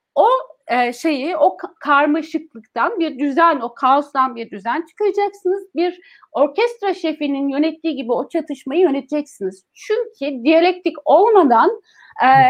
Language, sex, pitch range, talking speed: German, female, 265-350 Hz, 105 wpm